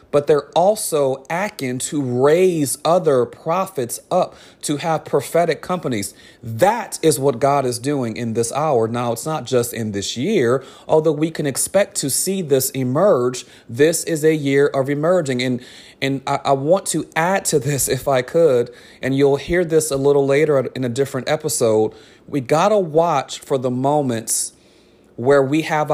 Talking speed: 175 wpm